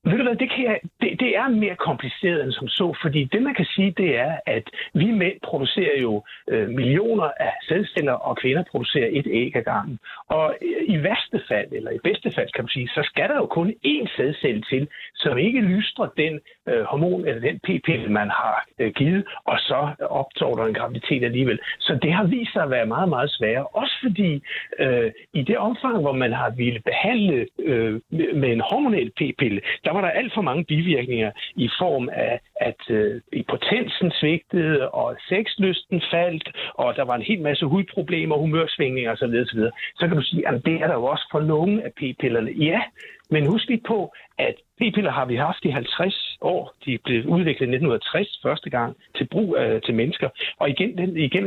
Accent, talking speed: native, 205 wpm